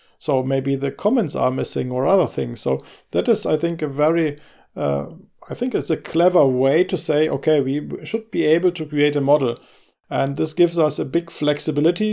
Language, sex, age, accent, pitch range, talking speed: English, male, 50-69, German, 135-170 Hz, 205 wpm